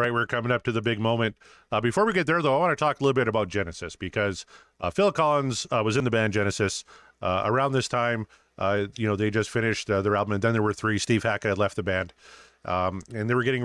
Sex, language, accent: male, English, American